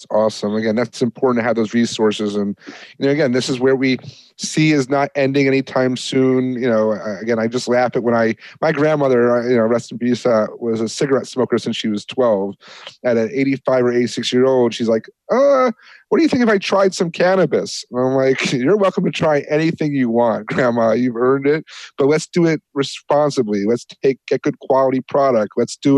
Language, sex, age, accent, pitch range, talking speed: English, male, 30-49, American, 120-145 Hz, 215 wpm